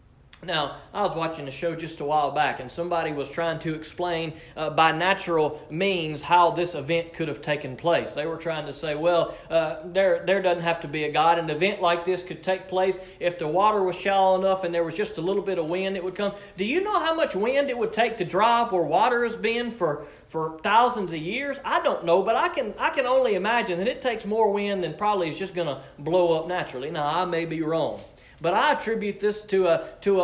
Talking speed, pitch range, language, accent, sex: 245 wpm, 160-210 Hz, English, American, male